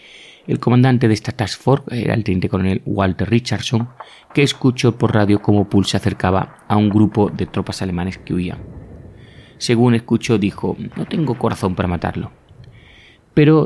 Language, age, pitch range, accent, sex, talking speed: Spanish, 30-49, 95-120 Hz, Spanish, male, 165 wpm